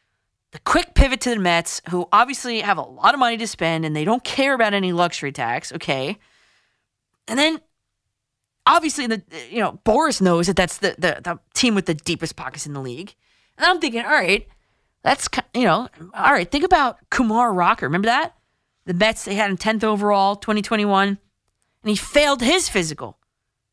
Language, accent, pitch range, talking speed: English, American, 180-275 Hz, 185 wpm